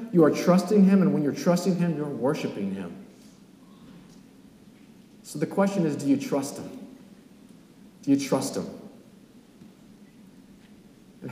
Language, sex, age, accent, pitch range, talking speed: English, male, 40-59, American, 140-220 Hz, 135 wpm